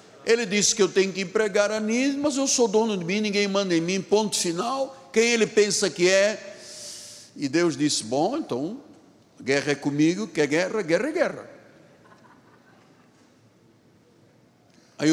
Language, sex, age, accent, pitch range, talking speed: Portuguese, male, 60-79, Brazilian, 155-215 Hz, 165 wpm